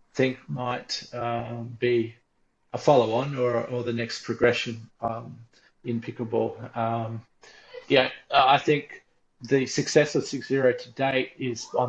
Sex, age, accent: male, 30-49, Australian